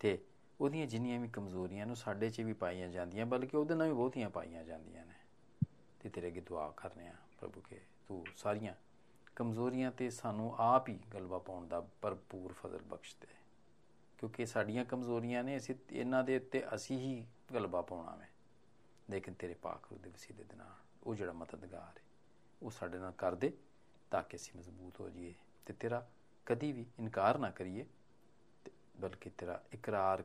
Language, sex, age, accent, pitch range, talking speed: Hindi, male, 40-59, native, 95-120 Hz, 140 wpm